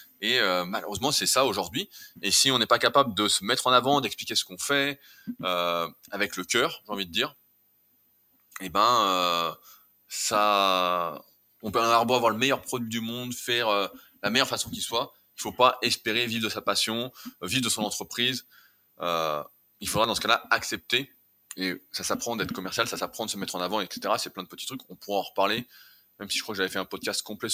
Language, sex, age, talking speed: French, male, 20-39, 220 wpm